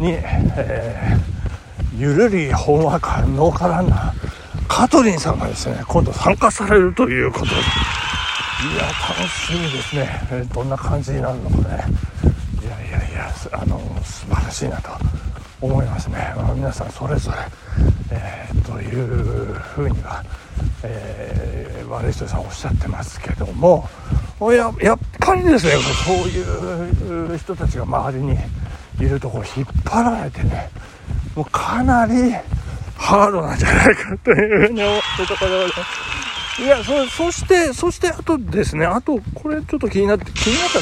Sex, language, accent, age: male, Japanese, native, 60-79